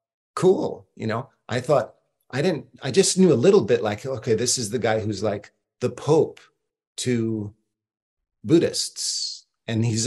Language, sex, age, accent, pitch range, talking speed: English, male, 40-59, American, 110-125 Hz, 160 wpm